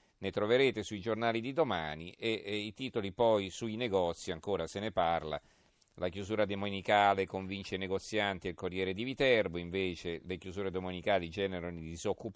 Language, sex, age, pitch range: Italian, male, 40-59, 90-110 Hz